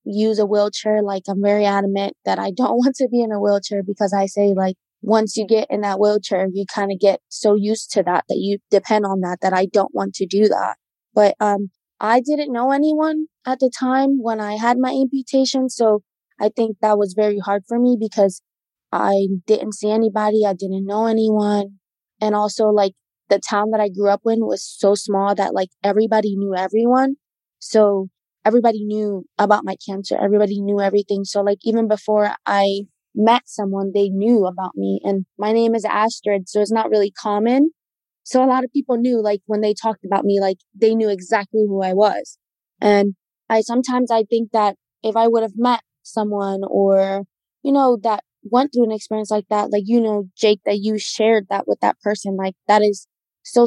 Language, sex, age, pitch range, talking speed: English, female, 20-39, 200-225 Hz, 205 wpm